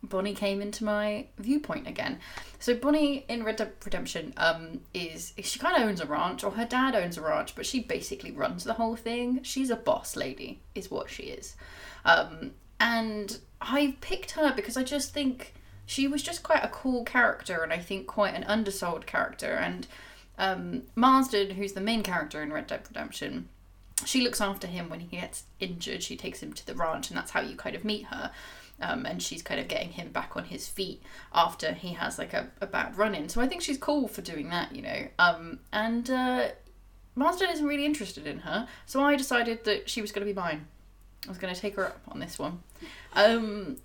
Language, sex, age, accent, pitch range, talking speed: English, female, 20-39, British, 190-265 Hz, 215 wpm